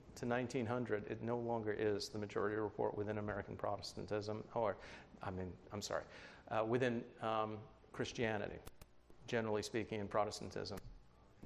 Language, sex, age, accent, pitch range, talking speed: English, male, 40-59, American, 110-130 Hz, 135 wpm